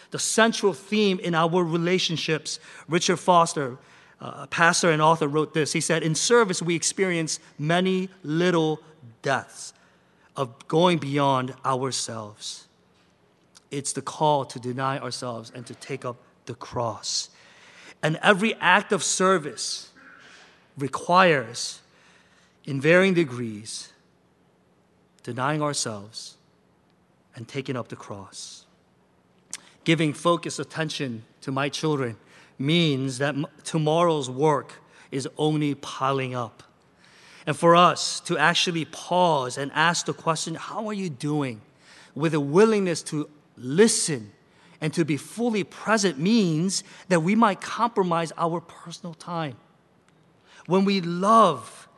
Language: English